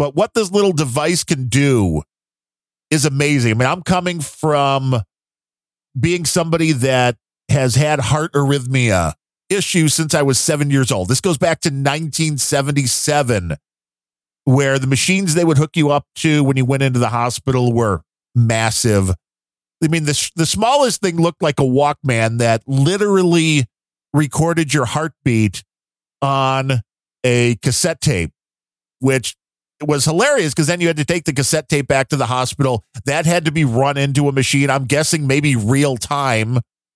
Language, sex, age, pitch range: English, male, 40-59, 115-145 Hz